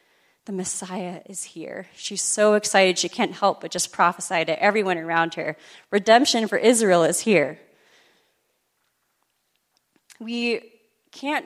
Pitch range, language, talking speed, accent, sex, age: 165-205 Hz, English, 125 wpm, American, female, 30-49